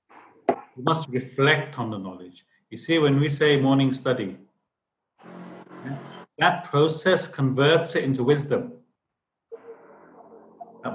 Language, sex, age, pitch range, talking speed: English, male, 40-59, 125-185 Hz, 105 wpm